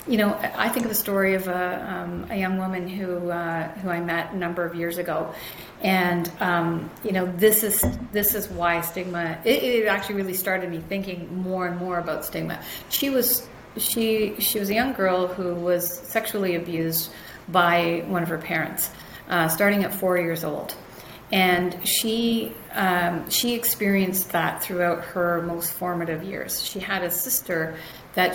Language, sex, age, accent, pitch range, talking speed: English, female, 40-59, American, 170-205 Hz, 180 wpm